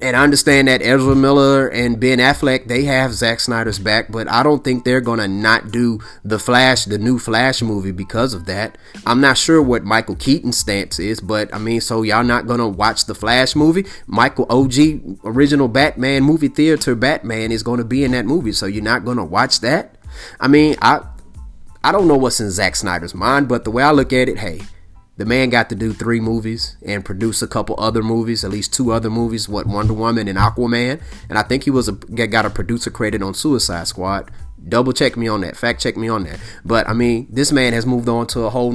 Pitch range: 105-130 Hz